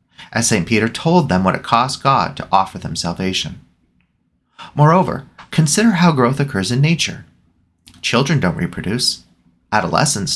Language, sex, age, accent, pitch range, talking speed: English, male, 30-49, American, 100-165 Hz, 140 wpm